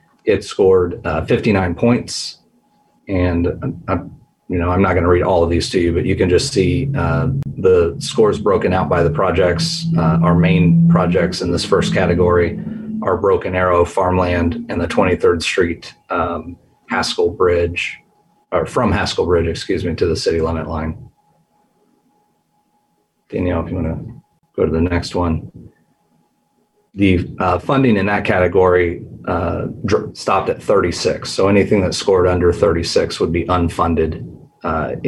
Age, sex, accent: 40-59, male, American